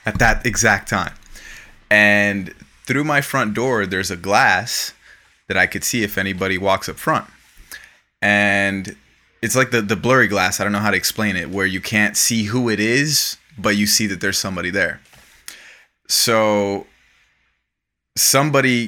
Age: 20-39